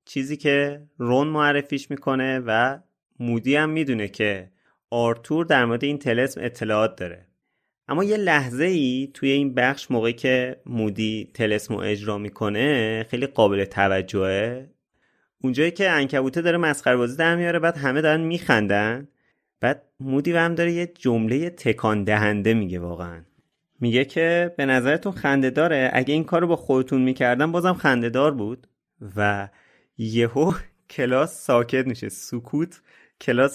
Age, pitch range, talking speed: 30-49, 105-140 Hz, 135 wpm